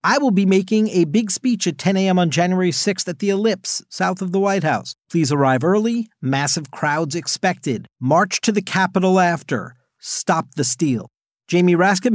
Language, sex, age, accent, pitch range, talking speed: English, male, 50-69, American, 140-200 Hz, 185 wpm